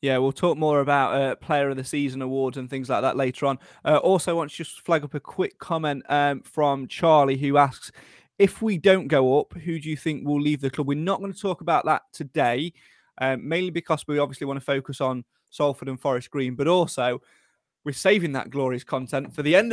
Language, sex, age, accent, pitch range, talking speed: English, male, 20-39, British, 135-170 Hz, 235 wpm